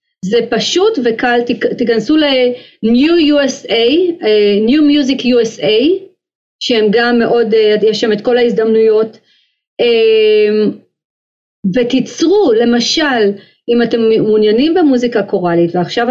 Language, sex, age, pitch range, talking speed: Hebrew, female, 30-49, 215-290 Hz, 95 wpm